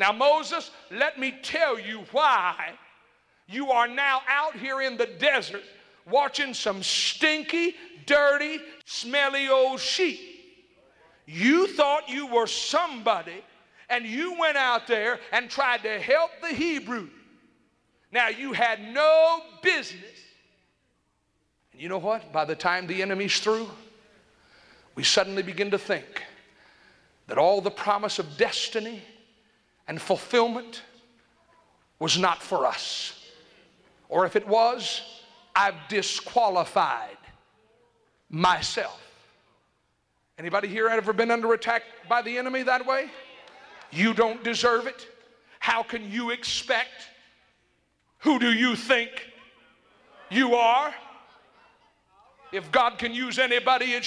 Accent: American